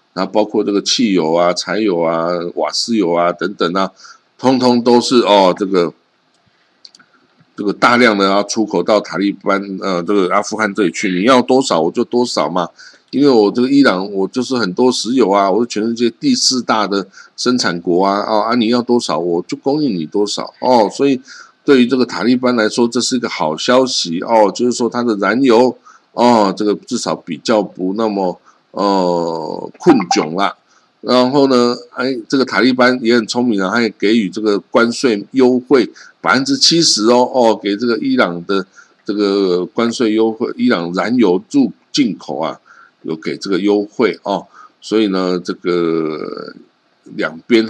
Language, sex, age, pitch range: Chinese, male, 50-69, 95-125 Hz